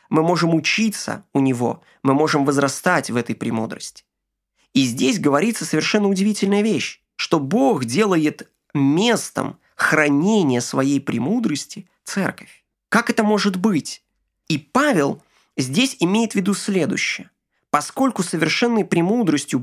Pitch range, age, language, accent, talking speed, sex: 145-215 Hz, 20-39, Ukrainian, native, 120 wpm, male